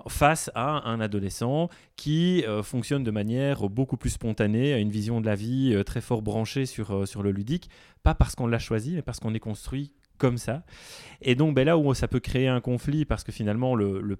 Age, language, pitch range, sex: 30-49, French, 105-130 Hz, male